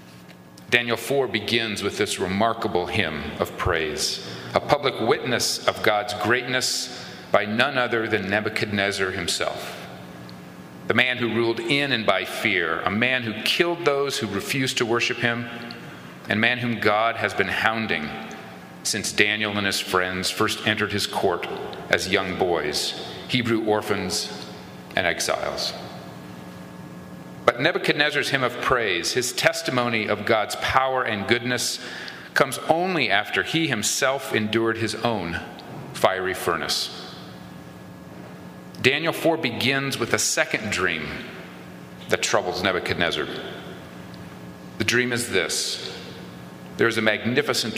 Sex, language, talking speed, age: male, English, 130 wpm, 40-59